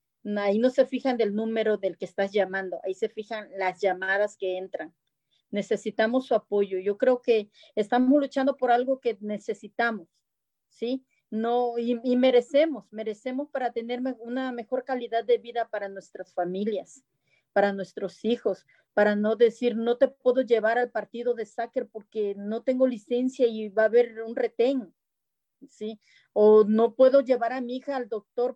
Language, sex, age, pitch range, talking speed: English, female, 40-59, 210-250 Hz, 165 wpm